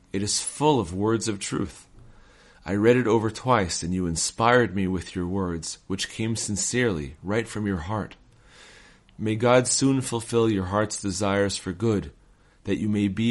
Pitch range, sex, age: 95-115 Hz, male, 40-59